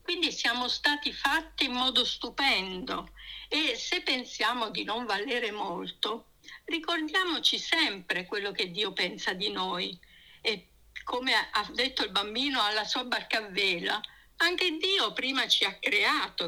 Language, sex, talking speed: Italian, female, 140 wpm